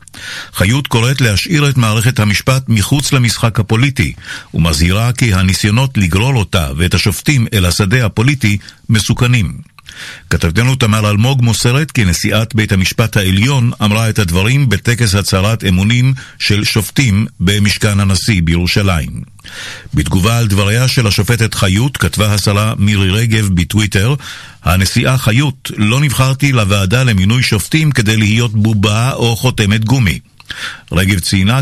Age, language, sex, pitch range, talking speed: 50-69, English, male, 100-130 Hz, 125 wpm